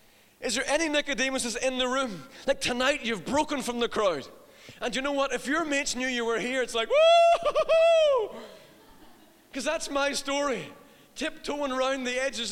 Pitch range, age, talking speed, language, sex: 255-300 Hz, 30-49, 175 wpm, English, male